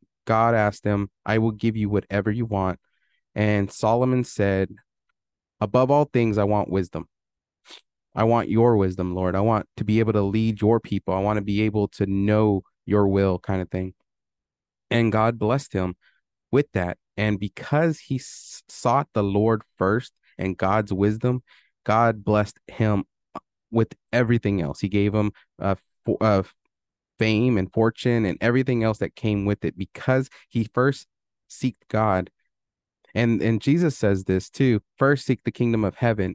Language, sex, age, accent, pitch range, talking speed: English, male, 20-39, American, 95-115 Hz, 165 wpm